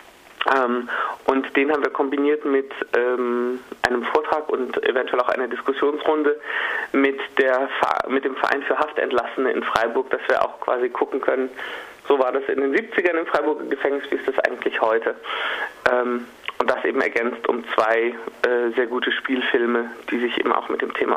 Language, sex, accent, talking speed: German, male, German, 165 wpm